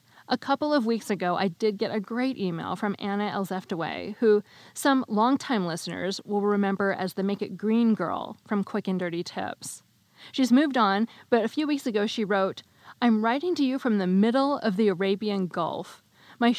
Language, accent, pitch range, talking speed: English, American, 195-240 Hz, 190 wpm